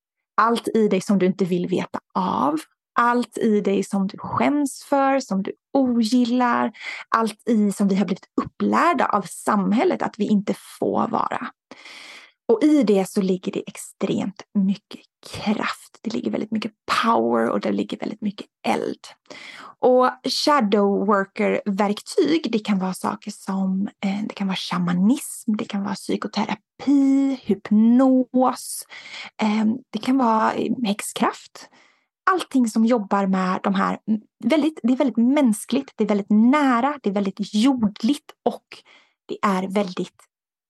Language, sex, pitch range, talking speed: Swedish, female, 200-255 Hz, 140 wpm